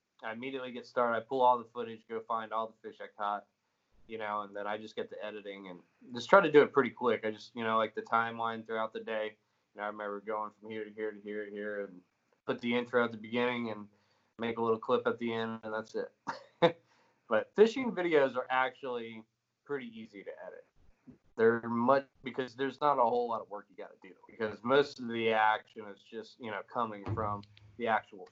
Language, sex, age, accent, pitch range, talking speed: English, male, 20-39, American, 110-125 Hz, 230 wpm